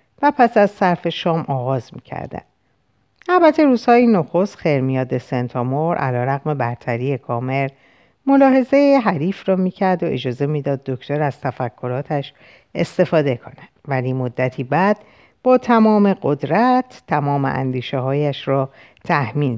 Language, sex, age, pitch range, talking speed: Persian, female, 50-69, 130-195 Hz, 120 wpm